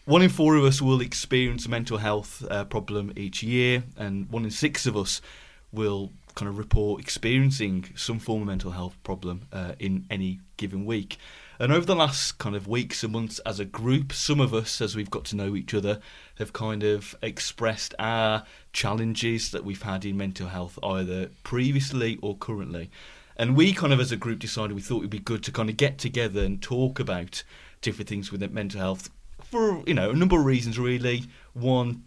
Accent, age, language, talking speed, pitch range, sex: British, 30-49, English, 205 wpm, 100-125 Hz, male